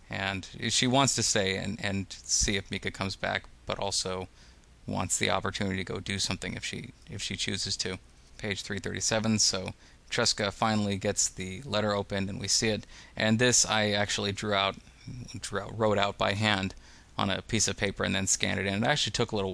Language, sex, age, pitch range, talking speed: English, male, 20-39, 95-105 Hz, 205 wpm